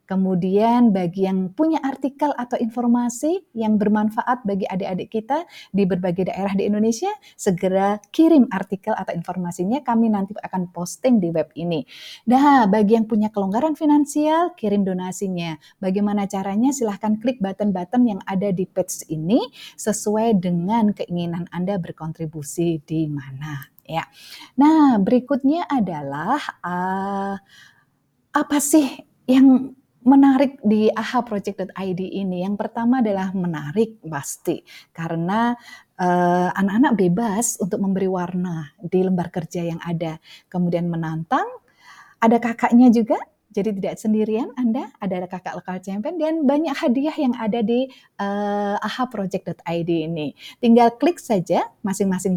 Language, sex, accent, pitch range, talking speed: Indonesian, female, native, 180-240 Hz, 125 wpm